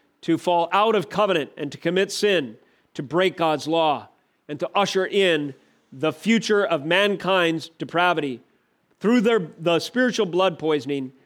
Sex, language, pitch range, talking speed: male, English, 160-200 Hz, 150 wpm